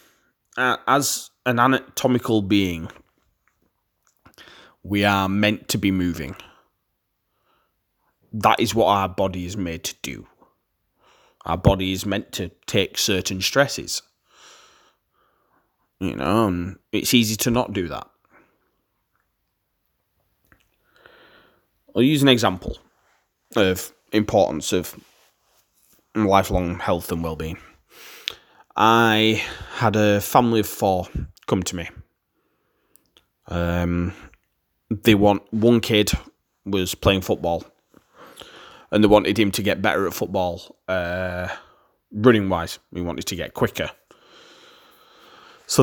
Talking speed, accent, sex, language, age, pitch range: 105 wpm, British, male, English, 20-39, 90-115 Hz